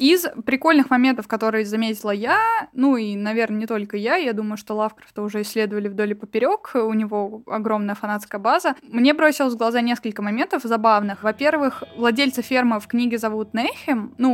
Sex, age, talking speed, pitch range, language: female, 20-39, 170 wpm, 215-270 Hz, Russian